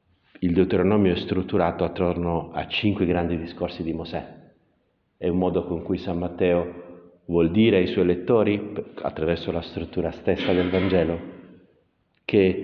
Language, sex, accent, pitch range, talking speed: Italian, male, native, 85-95 Hz, 140 wpm